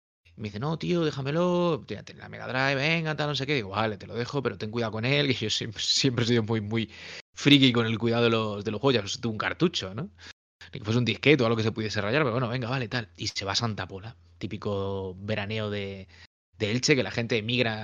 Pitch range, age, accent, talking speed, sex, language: 105-145 Hz, 20-39, Spanish, 250 wpm, male, Spanish